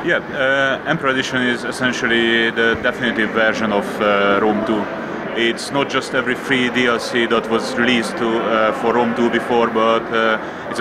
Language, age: English, 30-49